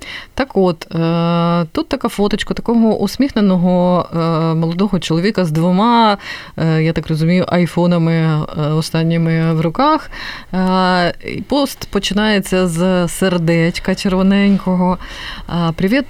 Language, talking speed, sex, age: Ukrainian, 110 wpm, female, 20-39